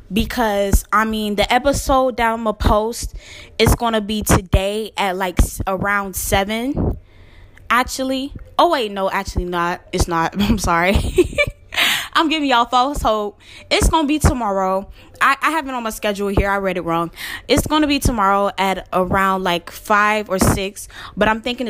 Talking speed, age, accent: 175 wpm, 10-29, American